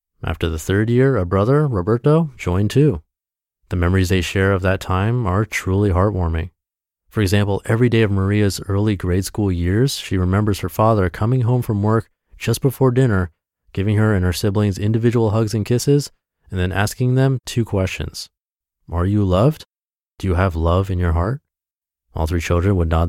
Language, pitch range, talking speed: English, 85-110 Hz, 180 wpm